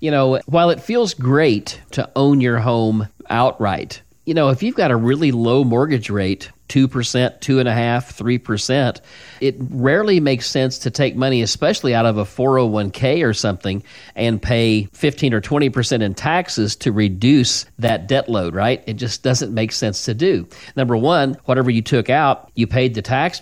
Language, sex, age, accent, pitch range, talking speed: English, male, 40-59, American, 110-135 Hz, 185 wpm